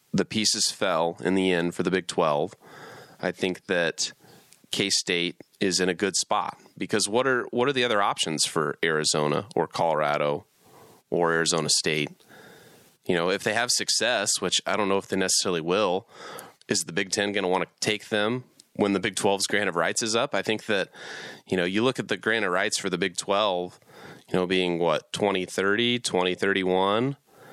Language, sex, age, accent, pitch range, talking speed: English, male, 30-49, American, 90-105 Hz, 195 wpm